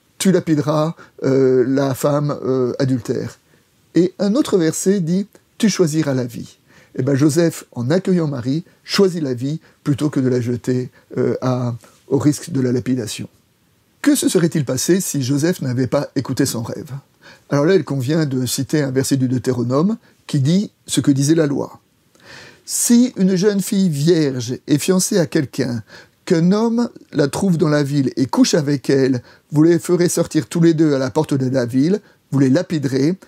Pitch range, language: 135-170 Hz, French